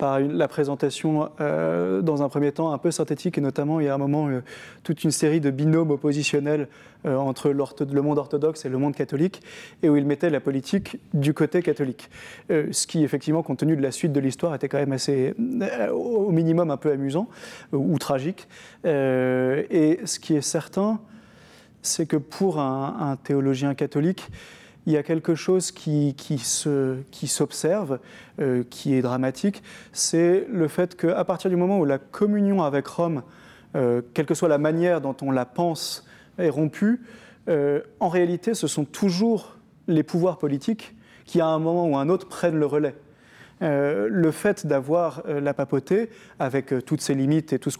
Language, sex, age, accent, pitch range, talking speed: French, male, 30-49, French, 140-175 Hz, 195 wpm